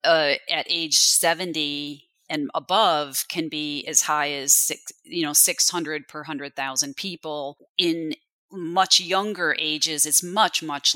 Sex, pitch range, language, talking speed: female, 145-180 Hz, English, 135 wpm